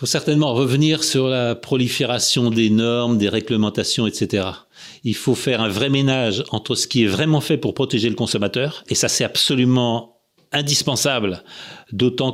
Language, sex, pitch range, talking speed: French, male, 115-140 Hz, 165 wpm